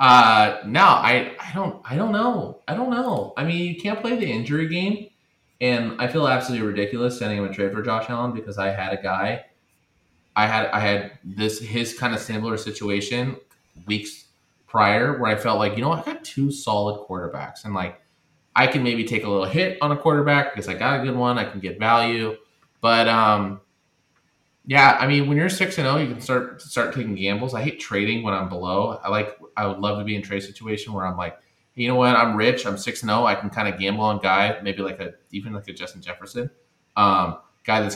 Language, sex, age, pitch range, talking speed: English, male, 20-39, 100-125 Hz, 225 wpm